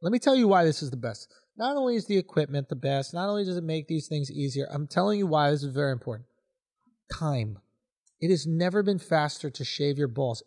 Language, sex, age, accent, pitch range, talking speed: English, male, 30-49, American, 140-190 Hz, 240 wpm